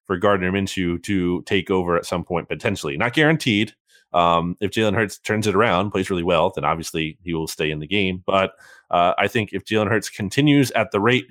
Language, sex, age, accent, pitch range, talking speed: English, male, 20-39, American, 95-120 Hz, 220 wpm